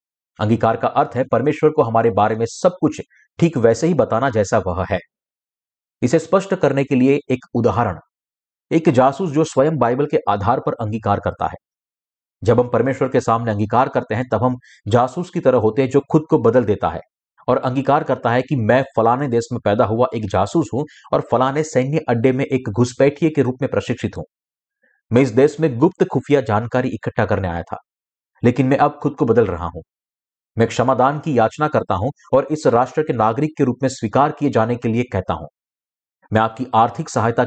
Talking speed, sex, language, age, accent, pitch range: 205 wpm, male, Hindi, 50-69, native, 105-140 Hz